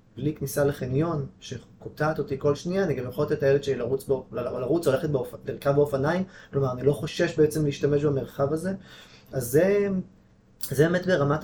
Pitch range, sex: 135-165 Hz, male